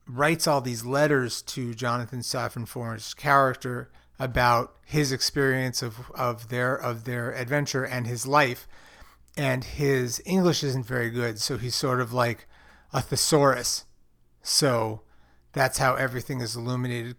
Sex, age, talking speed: male, 40-59, 135 wpm